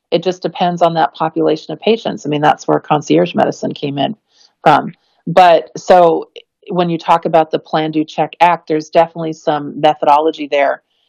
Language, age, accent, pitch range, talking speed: English, 40-59, American, 155-175 Hz, 180 wpm